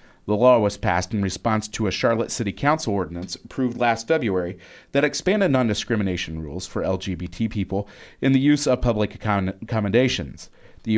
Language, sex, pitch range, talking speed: English, male, 95-120 Hz, 160 wpm